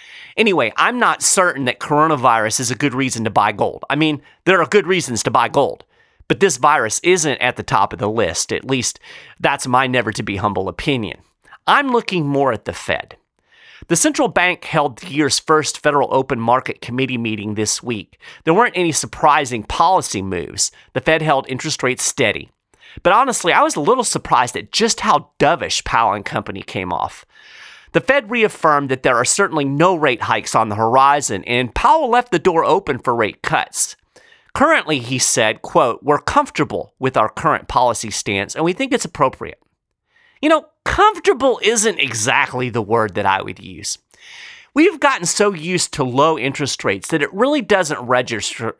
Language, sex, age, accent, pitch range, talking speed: English, male, 40-59, American, 125-200 Hz, 180 wpm